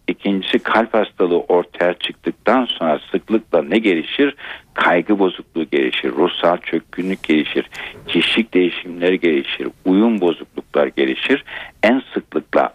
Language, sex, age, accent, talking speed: Turkish, male, 60-79, native, 110 wpm